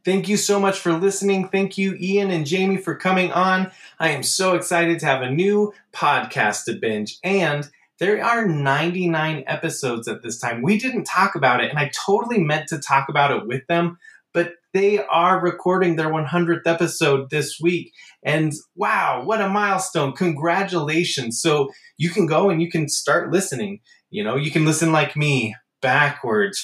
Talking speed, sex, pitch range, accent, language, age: 180 wpm, male, 145-185 Hz, American, English, 20-39